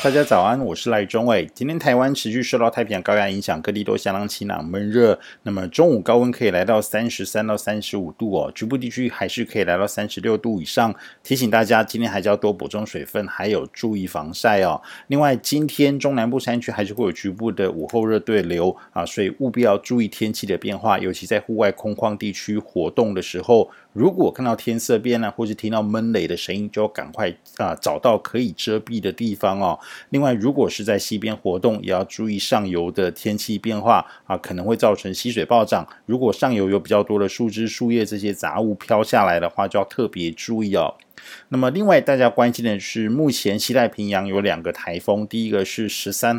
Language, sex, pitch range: Chinese, male, 100-120 Hz